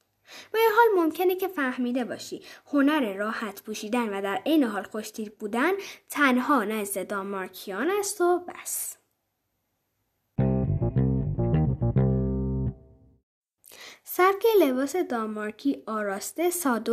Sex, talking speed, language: female, 95 wpm, Persian